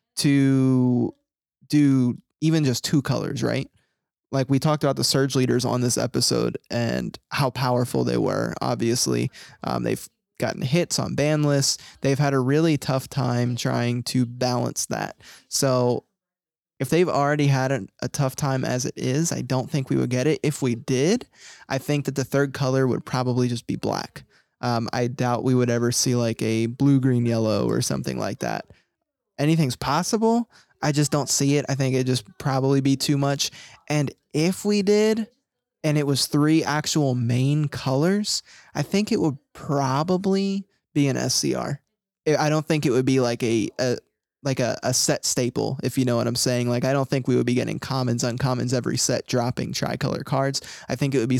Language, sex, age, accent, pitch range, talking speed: English, male, 20-39, American, 125-150 Hz, 190 wpm